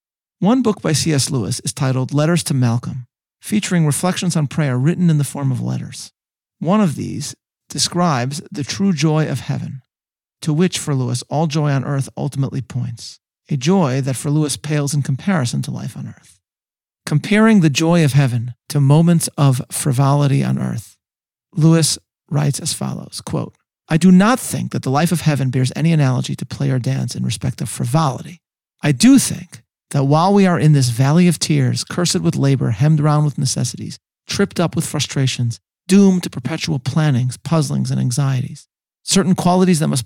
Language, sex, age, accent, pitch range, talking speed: English, male, 40-59, American, 135-165 Hz, 180 wpm